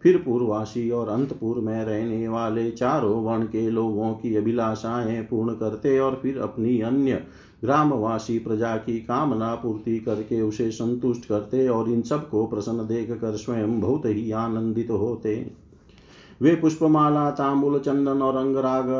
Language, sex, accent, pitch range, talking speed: Hindi, male, native, 115-130 Hz, 140 wpm